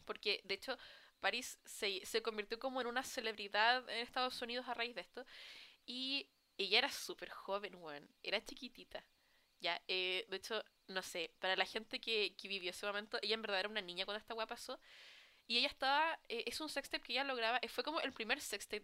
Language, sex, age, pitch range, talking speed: Spanish, female, 10-29, 210-275 Hz, 210 wpm